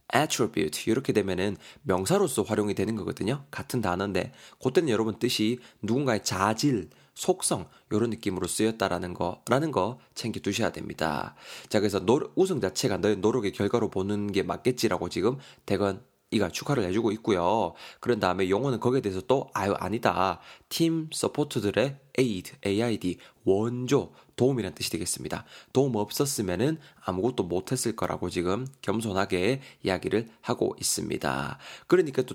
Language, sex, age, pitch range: Korean, male, 20-39, 100-130 Hz